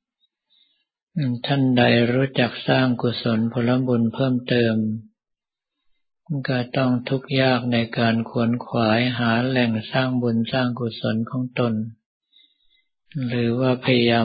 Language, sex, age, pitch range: Thai, male, 60-79, 115-130 Hz